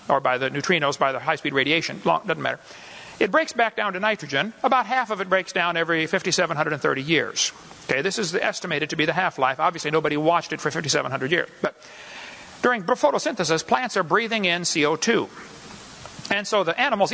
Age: 60-79